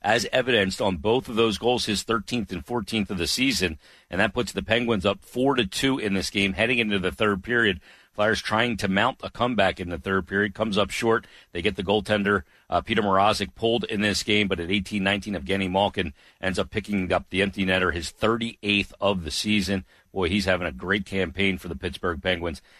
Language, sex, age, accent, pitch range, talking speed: English, male, 50-69, American, 90-105 Hz, 215 wpm